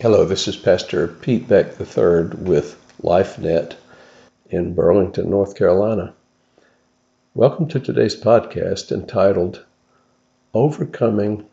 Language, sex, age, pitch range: English, male, 60-79, 95-125 Hz